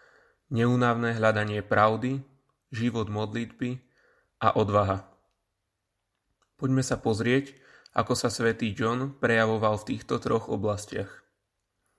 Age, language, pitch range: 20-39, Slovak, 105-120 Hz